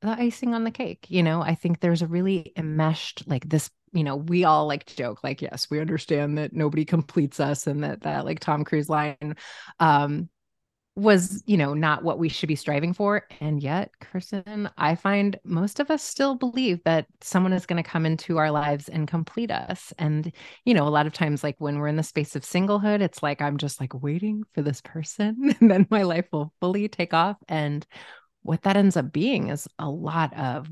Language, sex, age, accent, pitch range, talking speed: English, female, 30-49, American, 145-170 Hz, 220 wpm